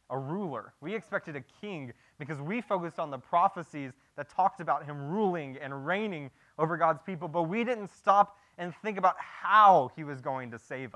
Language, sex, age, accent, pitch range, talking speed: English, male, 20-39, American, 155-210 Hz, 190 wpm